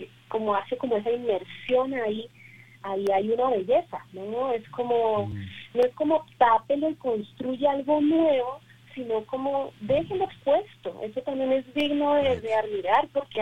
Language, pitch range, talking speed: Spanish, 205-245 Hz, 150 wpm